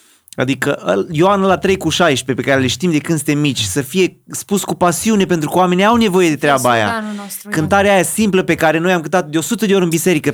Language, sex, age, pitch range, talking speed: Romanian, male, 30-49, 120-165 Hz, 240 wpm